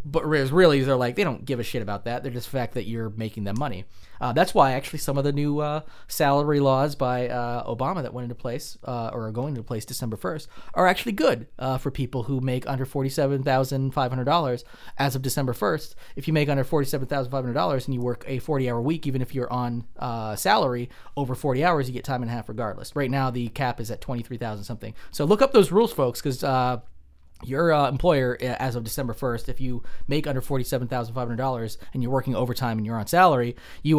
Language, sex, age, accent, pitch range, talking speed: English, male, 20-39, American, 115-140 Hz, 240 wpm